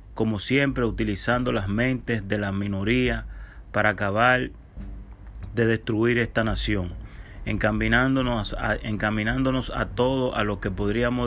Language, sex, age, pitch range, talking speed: Spanish, male, 30-49, 105-120 Hz, 115 wpm